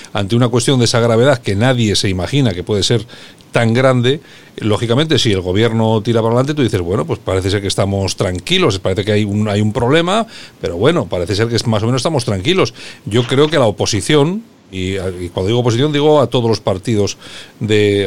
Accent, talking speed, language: Spanish, 205 wpm, Spanish